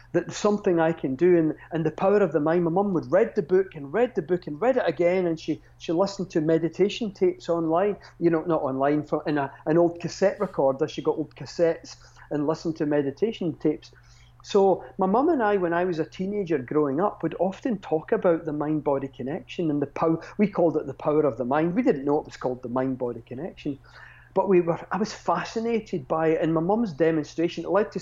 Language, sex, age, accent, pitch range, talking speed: English, male, 40-59, British, 145-180 Hz, 240 wpm